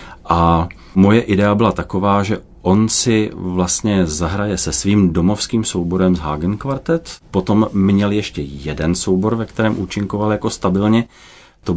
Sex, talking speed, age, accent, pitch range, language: male, 145 wpm, 30-49, native, 85-100 Hz, Czech